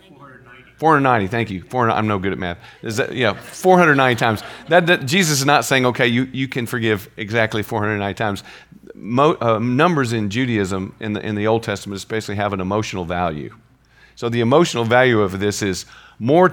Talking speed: 205 wpm